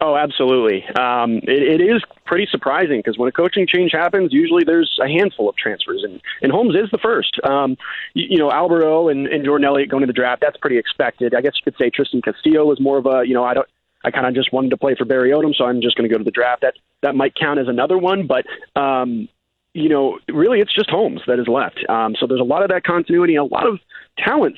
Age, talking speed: 30-49, 255 wpm